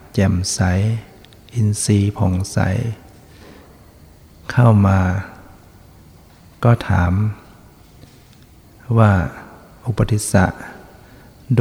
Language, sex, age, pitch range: Thai, male, 60-79, 95-115 Hz